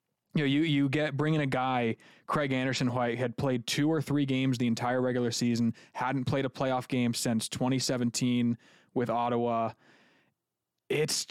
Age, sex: 20-39, male